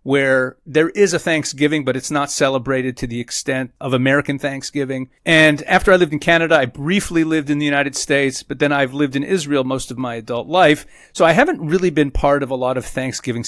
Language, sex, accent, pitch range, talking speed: English, male, American, 130-160 Hz, 225 wpm